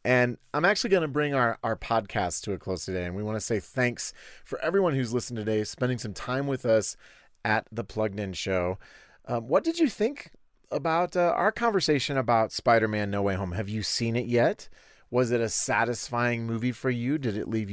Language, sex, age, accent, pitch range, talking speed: English, male, 30-49, American, 105-130 Hz, 215 wpm